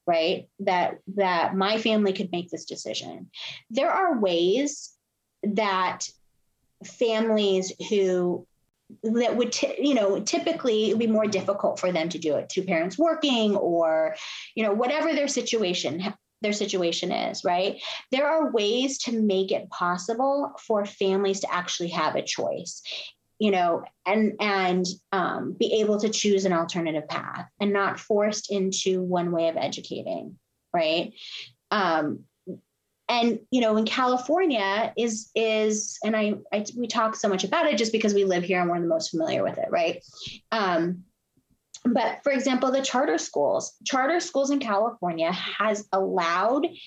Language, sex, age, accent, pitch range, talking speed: English, female, 30-49, American, 180-235 Hz, 155 wpm